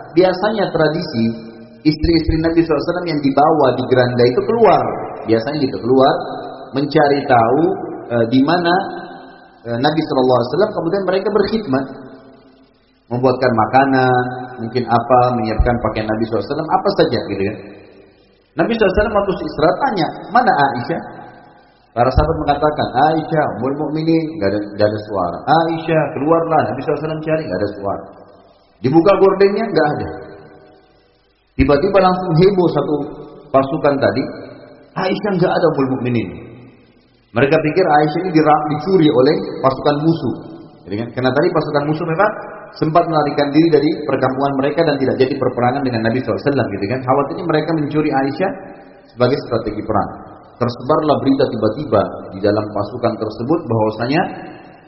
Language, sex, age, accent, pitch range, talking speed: English, male, 30-49, Indonesian, 120-155 Hz, 145 wpm